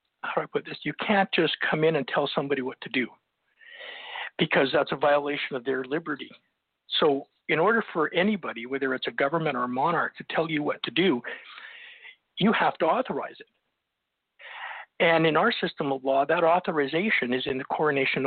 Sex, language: male, English